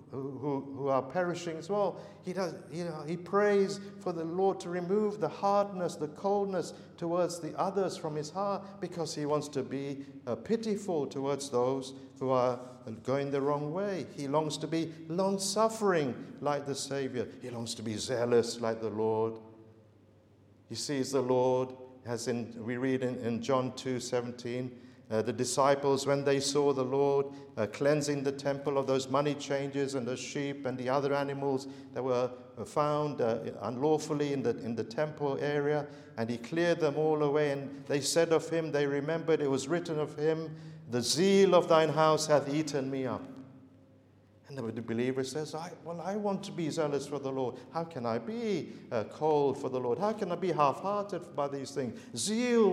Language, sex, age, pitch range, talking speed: English, male, 50-69, 125-160 Hz, 185 wpm